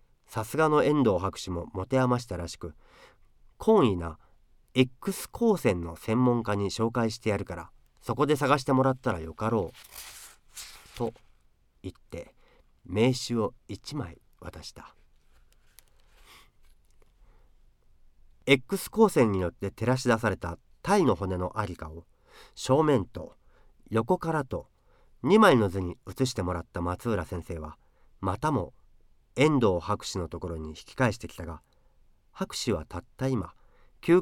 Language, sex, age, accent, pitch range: Japanese, male, 40-59, native, 90-130 Hz